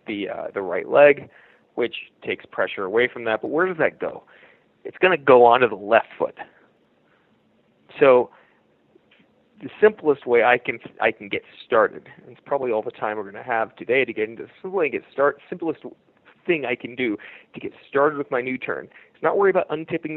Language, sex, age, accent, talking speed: English, male, 30-49, American, 200 wpm